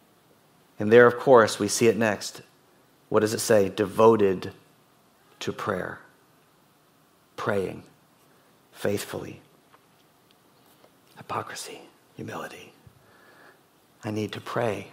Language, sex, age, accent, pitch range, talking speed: English, male, 50-69, American, 105-130 Hz, 90 wpm